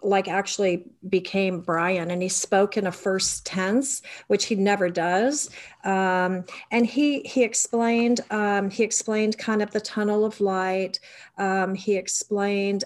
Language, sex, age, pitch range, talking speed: English, female, 40-59, 185-215 Hz, 150 wpm